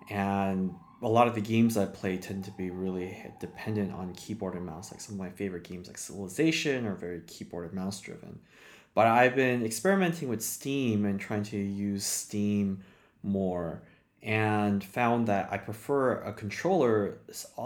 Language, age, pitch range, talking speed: English, 20-39, 95-110 Hz, 175 wpm